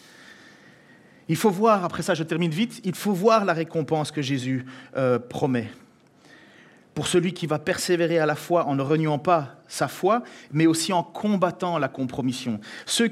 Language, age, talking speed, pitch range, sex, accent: French, 40-59, 175 wpm, 130-175 Hz, male, French